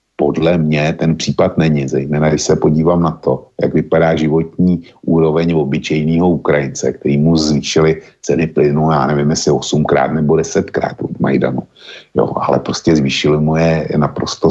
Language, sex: Slovak, male